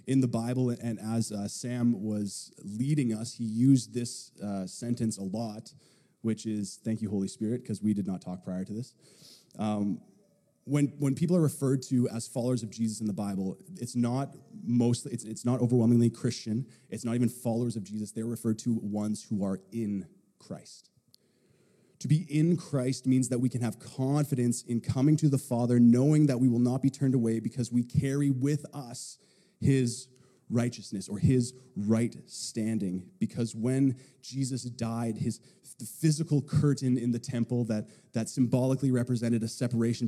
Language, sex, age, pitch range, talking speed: English, male, 20-39, 110-130 Hz, 175 wpm